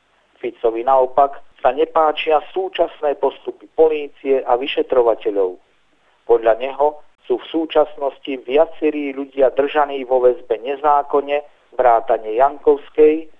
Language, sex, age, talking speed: Slovak, male, 50-69, 100 wpm